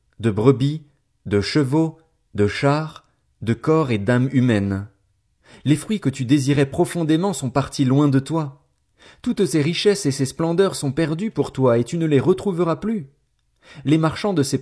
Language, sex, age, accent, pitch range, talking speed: French, male, 40-59, French, 115-165 Hz, 170 wpm